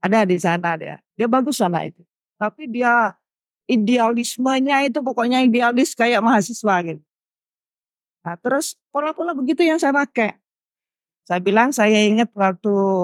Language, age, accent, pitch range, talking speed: Indonesian, 50-69, native, 195-270 Hz, 135 wpm